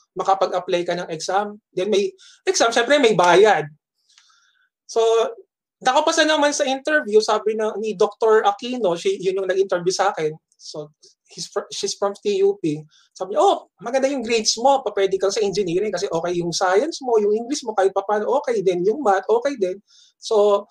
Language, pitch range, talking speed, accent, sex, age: Filipino, 190-295 Hz, 175 wpm, native, male, 20-39